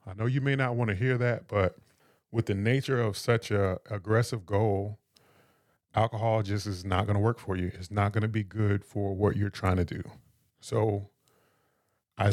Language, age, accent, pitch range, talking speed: English, 20-39, American, 100-125 Hz, 200 wpm